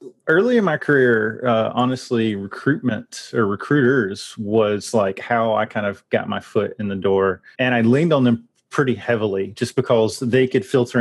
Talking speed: 180 wpm